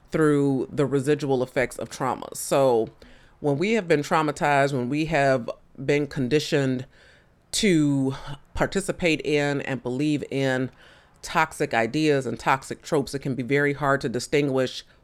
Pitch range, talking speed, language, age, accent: 130-160 Hz, 140 wpm, English, 30-49, American